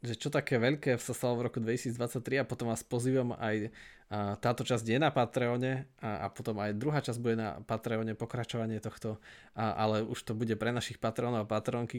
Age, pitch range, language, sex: 20-39, 110-120 Hz, Slovak, male